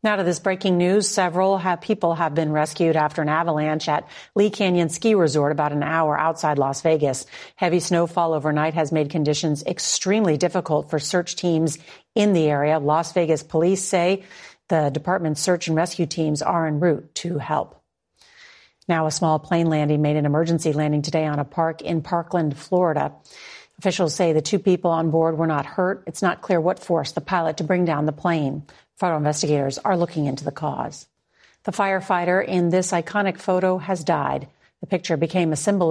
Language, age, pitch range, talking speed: English, 40-59, 155-180 Hz, 185 wpm